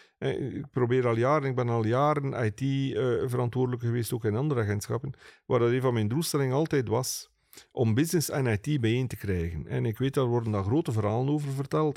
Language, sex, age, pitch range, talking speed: Dutch, male, 40-59, 105-150 Hz, 195 wpm